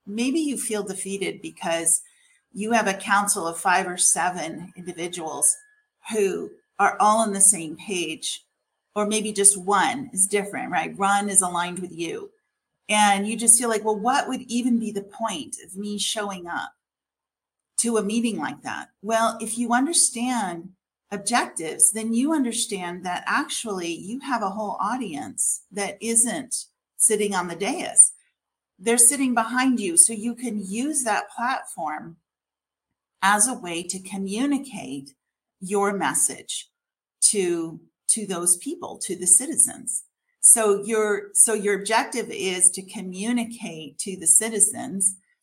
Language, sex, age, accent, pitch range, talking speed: English, female, 40-59, American, 185-235 Hz, 145 wpm